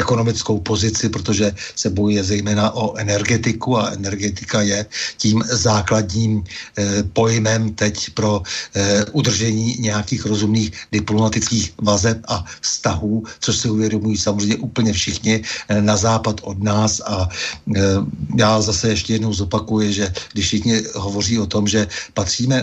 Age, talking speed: 60-79, 135 wpm